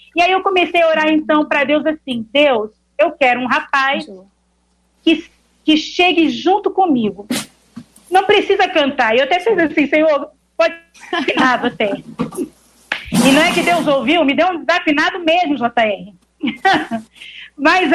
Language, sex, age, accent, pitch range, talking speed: Portuguese, female, 40-59, Brazilian, 245-310 Hz, 145 wpm